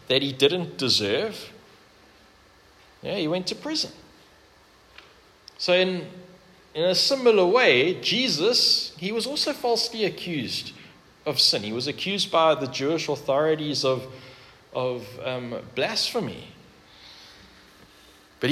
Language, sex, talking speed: English, male, 115 wpm